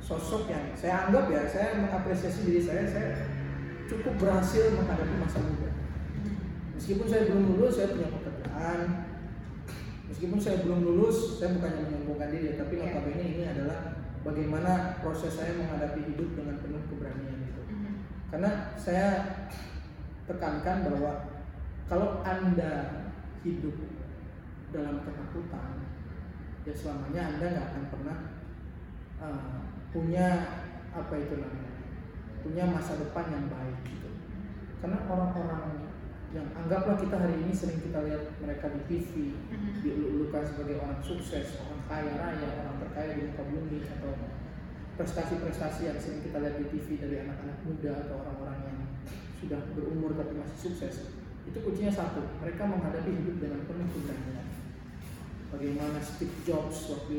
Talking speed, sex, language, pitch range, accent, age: 130 wpm, male, Indonesian, 140-175 Hz, native, 20-39